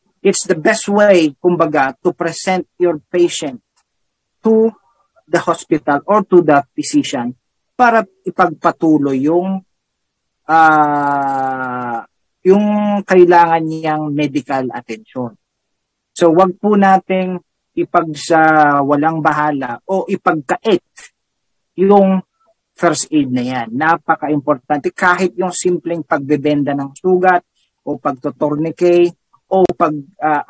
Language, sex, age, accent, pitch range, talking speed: Filipino, male, 40-59, native, 145-180 Hz, 100 wpm